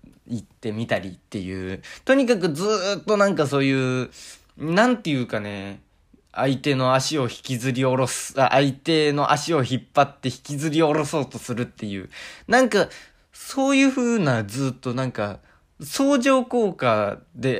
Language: Japanese